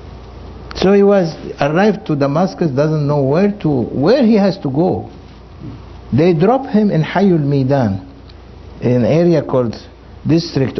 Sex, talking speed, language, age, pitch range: male, 140 wpm, English, 60-79, 105-155 Hz